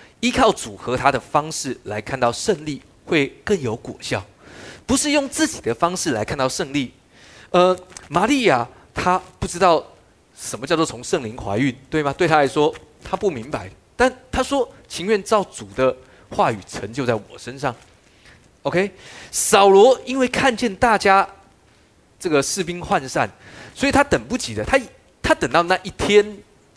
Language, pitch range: Chinese, 125-185 Hz